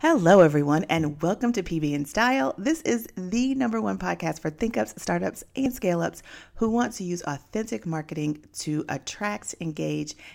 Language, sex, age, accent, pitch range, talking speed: English, female, 40-59, American, 135-175 Hz, 175 wpm